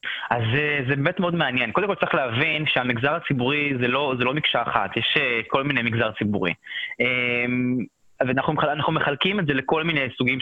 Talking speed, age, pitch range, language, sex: 165 wpm, 20-39, 125-170 Hz, Hebrew, male